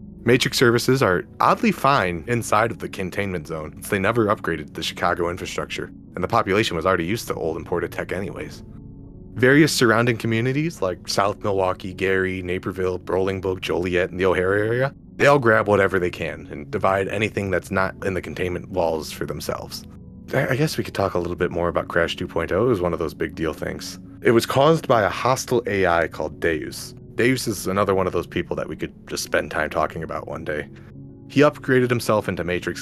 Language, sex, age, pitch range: English, male, 30-49, 90-115 Hz